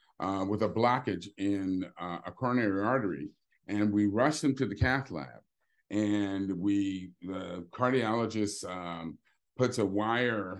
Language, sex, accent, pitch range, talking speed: English, male, American, 105-145 Hz, 140 wpm